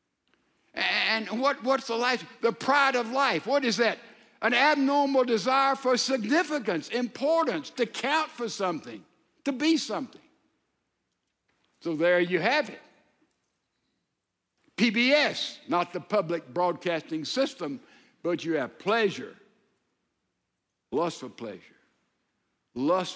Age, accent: 60-79, American